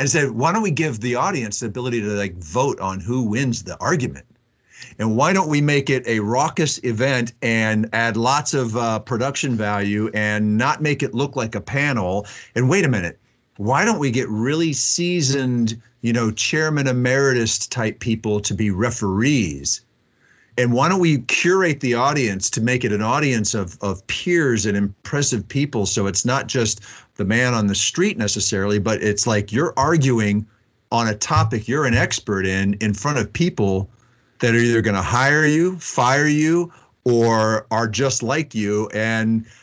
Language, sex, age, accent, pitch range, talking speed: English, male, 50-69, American, 110-140 Hz, 180 wpm